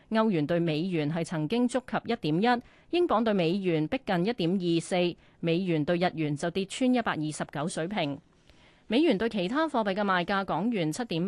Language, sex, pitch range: Chinese, female, 165-225 Hz